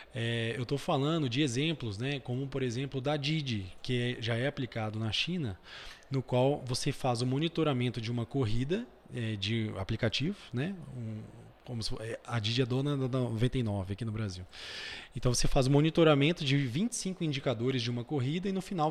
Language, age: Portuguese, 20-39